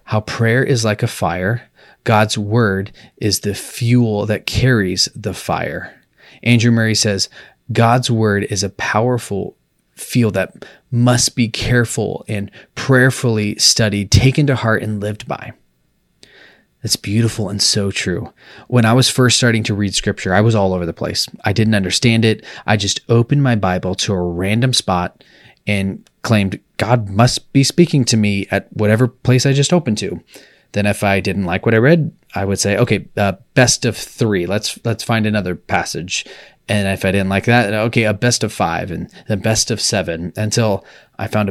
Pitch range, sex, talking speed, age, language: 100-120 Hz, male, 180 wpm, 30-49, English